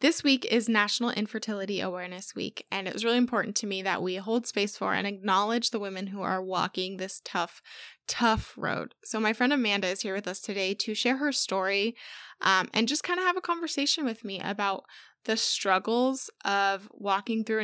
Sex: female